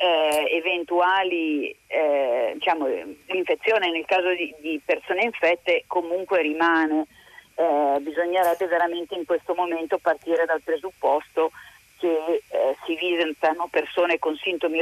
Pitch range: 160-180 Hz